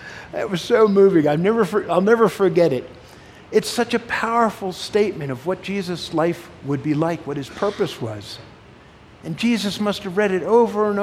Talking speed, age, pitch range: 190 wpm, 50-69, 120-200 Hz